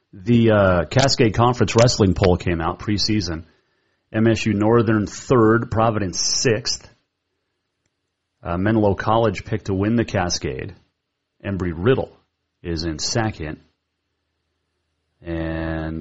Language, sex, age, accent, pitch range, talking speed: English, male, 30-49, American, 85-110 Hz, 100 wpm